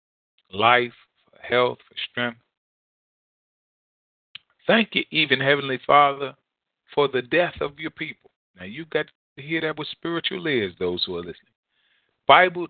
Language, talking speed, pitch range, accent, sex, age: English, 130 wpm, 110-145 Hz, American, male, 40-59